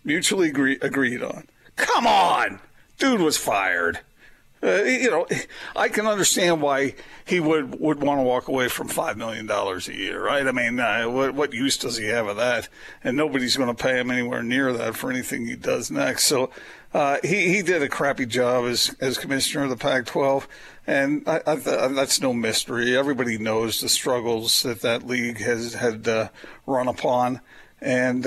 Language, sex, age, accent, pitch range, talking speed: English, male, 50-69, American, 125-160 Hz, 185 wpm